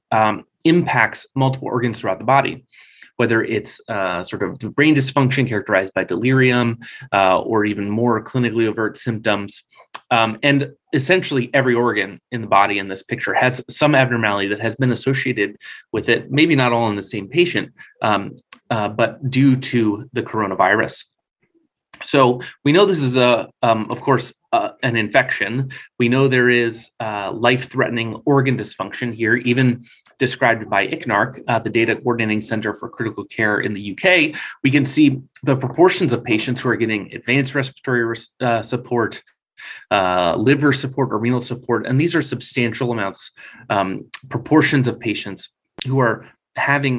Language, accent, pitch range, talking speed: English, American, 115-135 Hz, 160 wpm